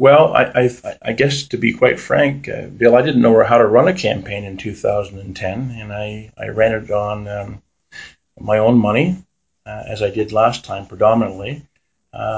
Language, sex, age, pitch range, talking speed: English, male, 40-59, 105-115 Hz, 185 wpm